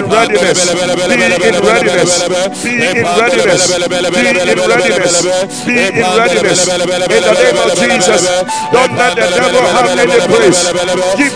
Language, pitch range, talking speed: English, 180-260 Hz, 150 wpm